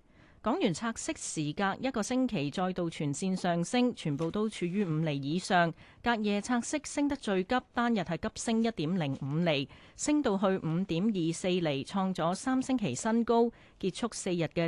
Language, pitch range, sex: Chinese, 165-230 Hz, female